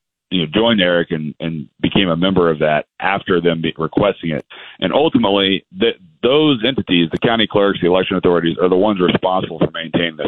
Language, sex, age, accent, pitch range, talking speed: English, male, 40-59, American, 85-100 Hz, 185 wpm